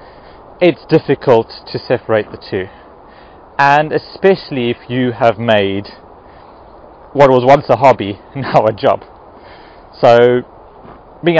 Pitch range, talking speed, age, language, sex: 115-160 Hz, 115 wpm, 30-49, English, male